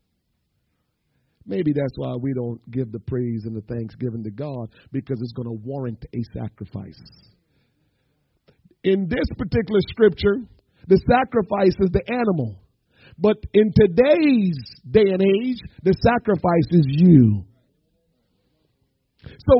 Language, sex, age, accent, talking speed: English, male, 50-69, American, 125 wpm